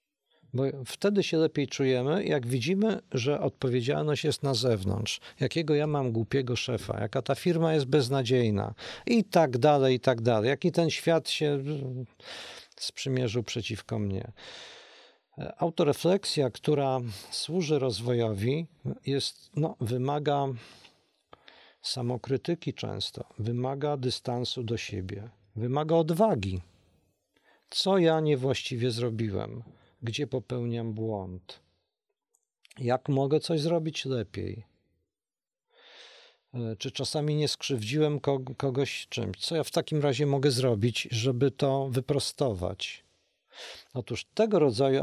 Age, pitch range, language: 50-69, 115-150 Hz, Polish